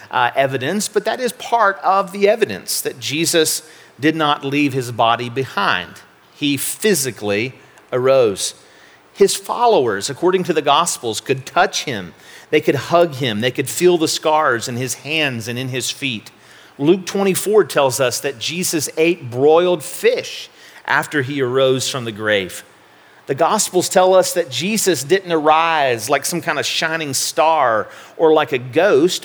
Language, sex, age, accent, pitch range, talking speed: English, male, 40-59, American, 135-195 Hz, 160 wpm